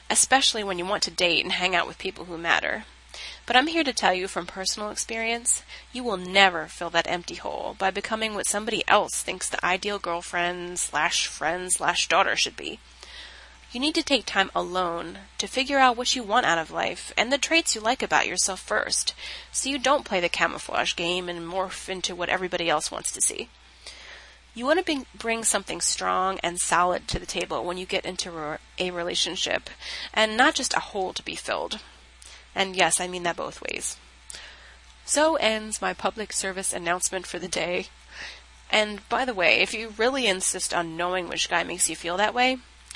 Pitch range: 170-225 Hz